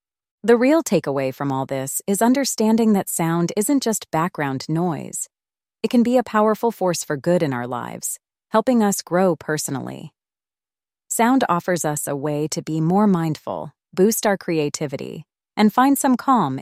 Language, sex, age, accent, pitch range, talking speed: English, female, 30-49, American, 145-215 Hz, 165 wpm